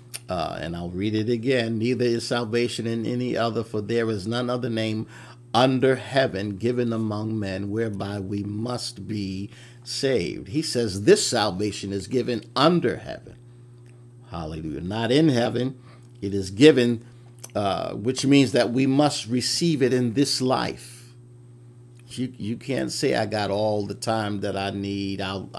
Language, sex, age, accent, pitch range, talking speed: English, male, 50-69, American, 100-120 Hz, 155 wpm